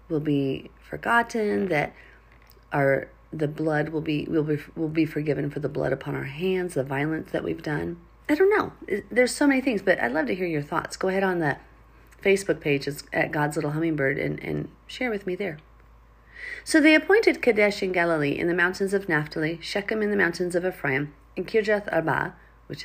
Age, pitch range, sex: 40-59, 145-195 Hz, female